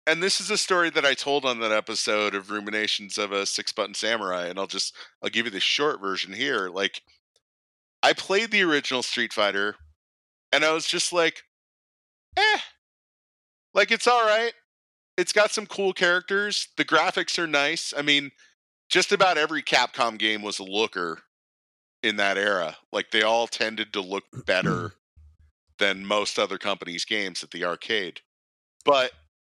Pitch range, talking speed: 95-145 Hz, 170 wpm